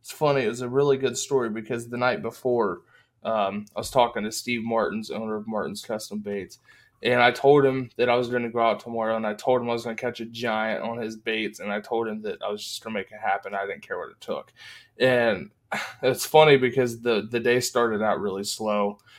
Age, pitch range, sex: 20-39, 110-135 Hz, male